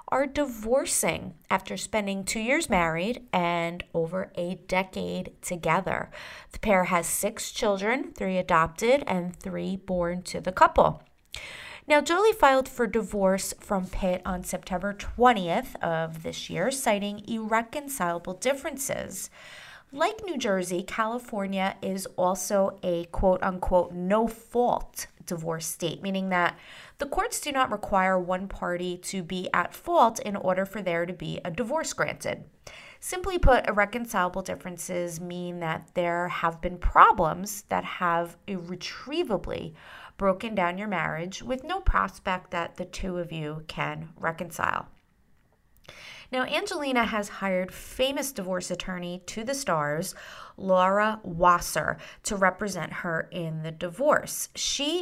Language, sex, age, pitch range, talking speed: English, female, 30-49, 175-225 Hz, 130 wpm